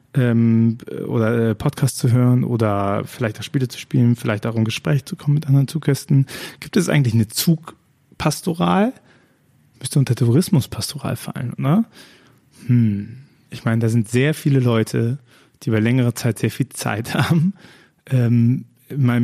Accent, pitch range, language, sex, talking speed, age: German, 115-135 Hz, German, male, 150 wpm, 30-49